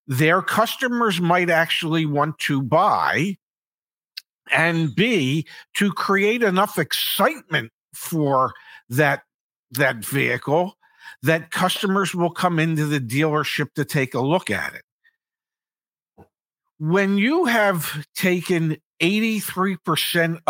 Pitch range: 150-210 Hz